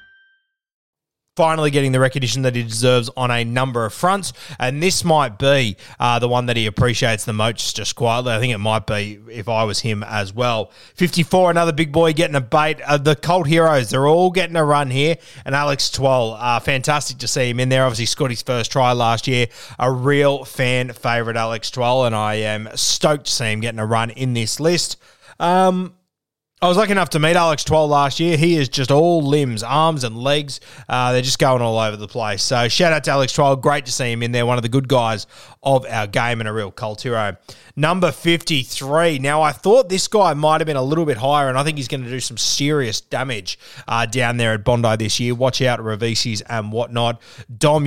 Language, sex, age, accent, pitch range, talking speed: English, male, 20-39, Australian, 115-150 Hz, 225 wpm